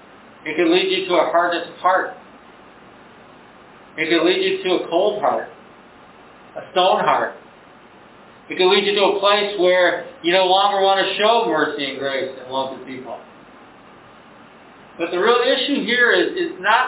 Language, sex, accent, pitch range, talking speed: English, male, American, 175-250 Hz, 170 wpm